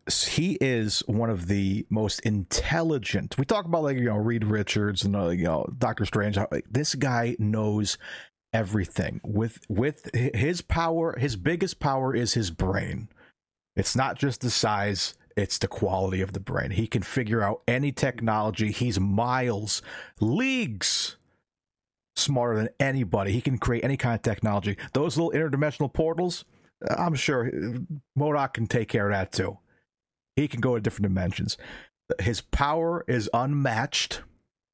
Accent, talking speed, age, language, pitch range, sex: American, 150 wpm, 40-59, English, 105-140 Hz, male